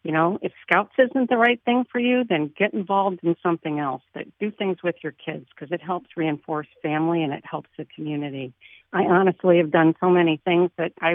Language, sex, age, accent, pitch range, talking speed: English, female, 60-79, American, 155-185 Hz, 215 wpm